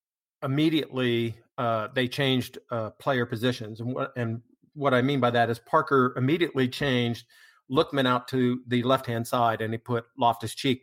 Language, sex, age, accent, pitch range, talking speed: English, male, 50-69, American, 115-140 Hz, 160 wpm